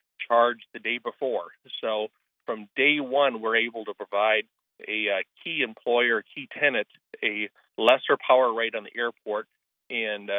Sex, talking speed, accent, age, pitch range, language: male, 160 wpm, American, 40-59, 115-130 Hz, English